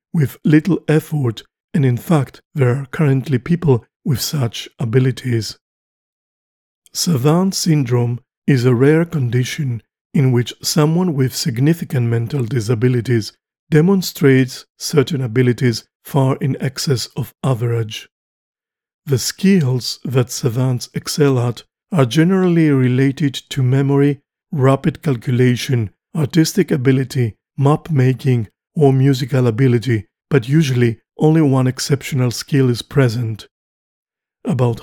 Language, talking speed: English, 105 wpm